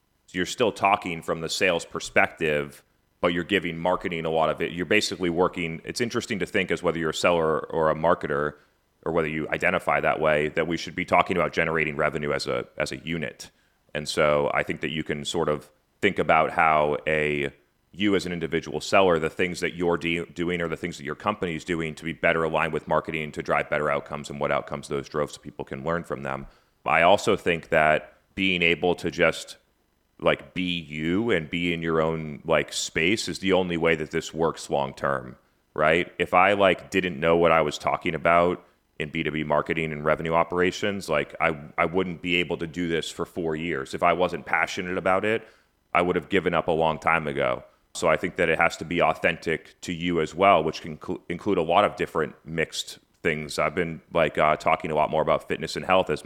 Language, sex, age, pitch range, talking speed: English, male, 30-49, 75-85 Hz, 225 wpm